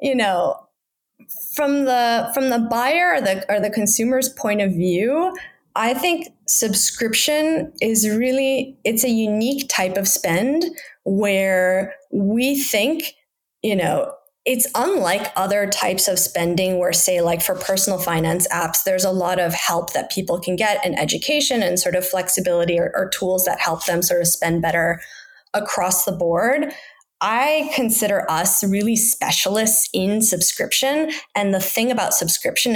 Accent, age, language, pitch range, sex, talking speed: American, 10-29, English, 180-245 Hz, female, 155 wpm